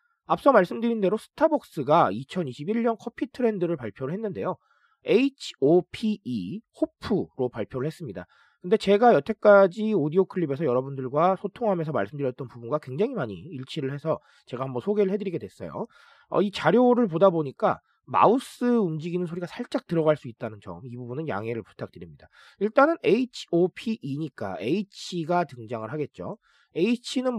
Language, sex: Korean, male